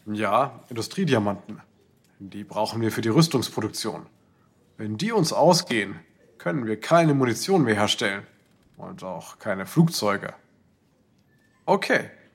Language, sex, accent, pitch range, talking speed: German, male, German, 120-180 Hz, 110 wpm